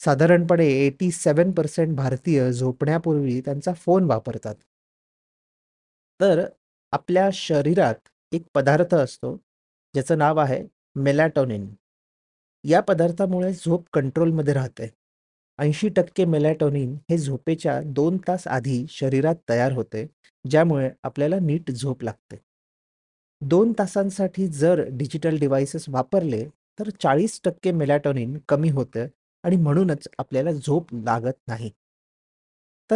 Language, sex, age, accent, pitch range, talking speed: Marathi, male, 30-49, native, 125-170 Hz, 95 wpm